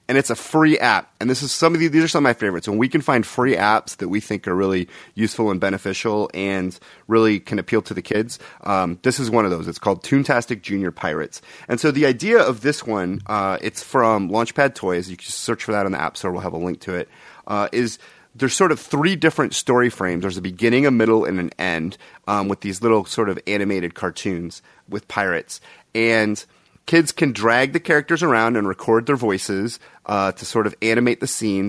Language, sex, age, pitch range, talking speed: English, male, 30-49, 95-120 Hz, 230 wpm